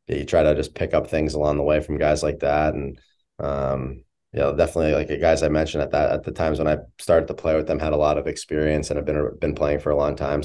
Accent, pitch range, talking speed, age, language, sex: American, 75-85 Hz, 285 wpm, 20-39, English, male